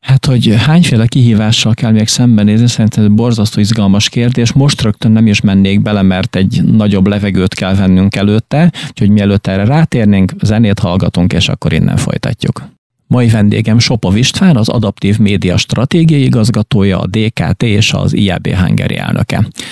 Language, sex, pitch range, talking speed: Hungarian, male, 105-125 Hz, 160 wpm